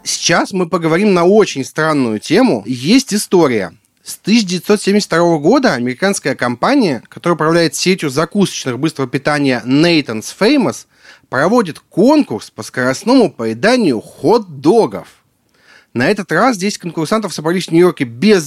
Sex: male